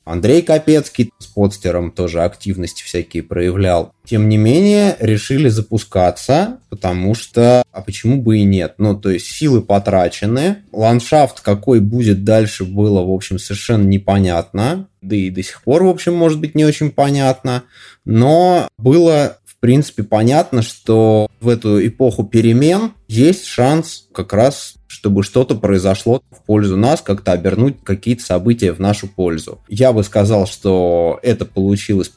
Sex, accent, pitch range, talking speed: male, native, 95-125 Hz, 145 wpm